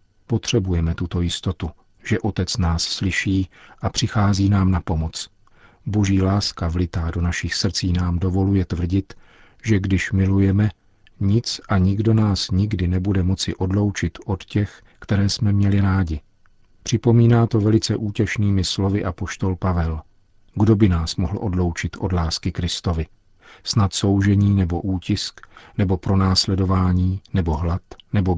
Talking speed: 135 wpm